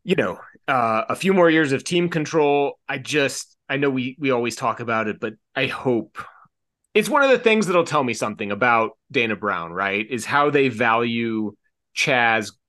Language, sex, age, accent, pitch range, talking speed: English, male, 30-49, American, 115-145 Hz, 195 wpm